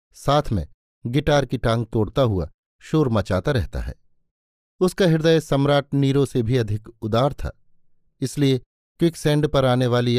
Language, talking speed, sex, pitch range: Hindi, 145 wpm, male, 110-145 Hz